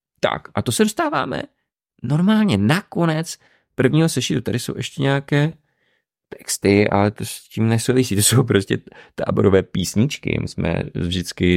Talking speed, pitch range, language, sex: 140 wpm, 90-125 Hz, Czech, male